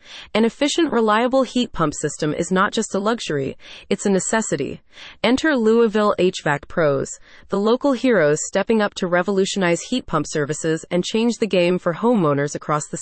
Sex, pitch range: female, 170-235 Hz